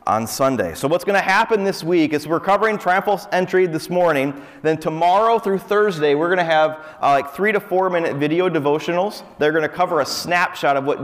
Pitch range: 135-180 Hz